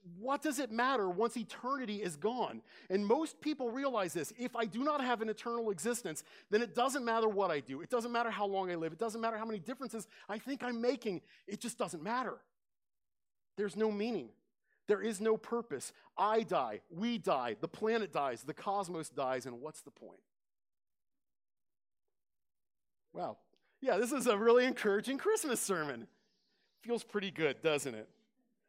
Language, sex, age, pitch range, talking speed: English, male, 40-59, 150-230 Hz, 180 wpm